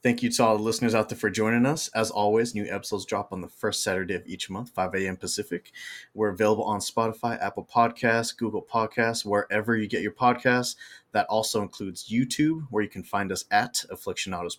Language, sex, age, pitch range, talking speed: English, male, 20-39, 100-120 Hz, 205 wpm